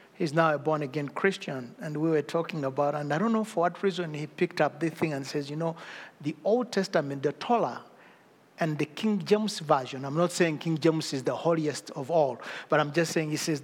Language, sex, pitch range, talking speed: English, male, 150-185 Hz, 230 wpm